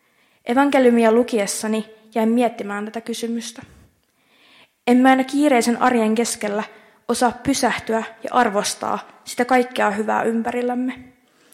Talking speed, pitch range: 105 wpm, 210-240 Hz